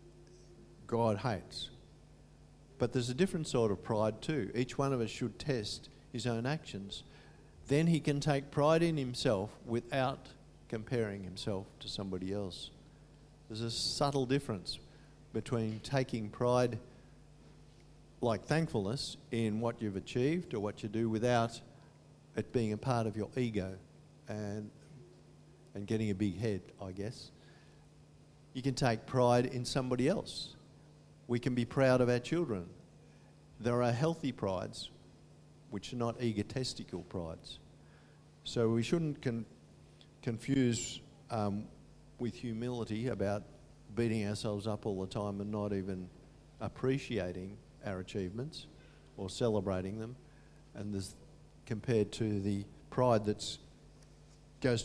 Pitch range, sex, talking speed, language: 100-130 Hz, male, 130 wpm, English